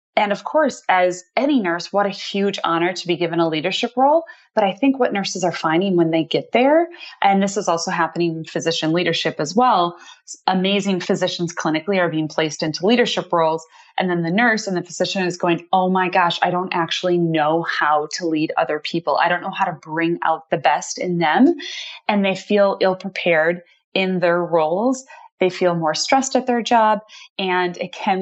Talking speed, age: 200 wpm, 20-39